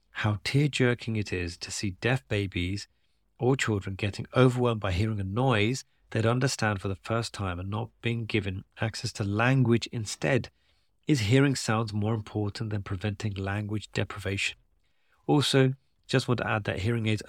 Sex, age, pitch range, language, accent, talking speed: male, 40-59, 95-115 Hz, English, British, 165 wpm